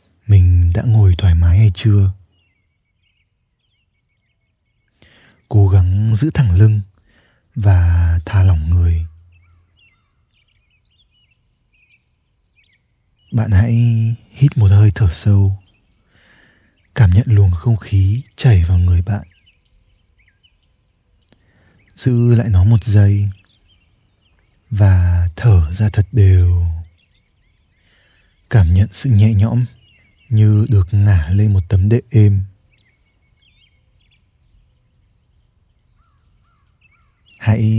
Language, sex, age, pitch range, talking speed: Vietnamese, male, 20-39, 90-110 Hz, 90 wpm